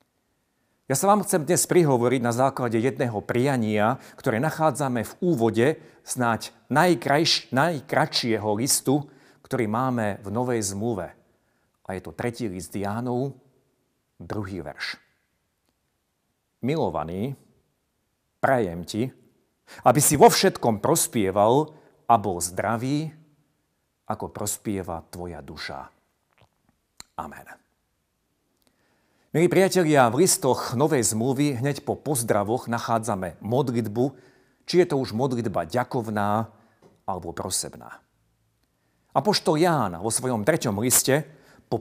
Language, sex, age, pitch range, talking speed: Slovak, male, 50-69, 110-145 Hz, 105 wpm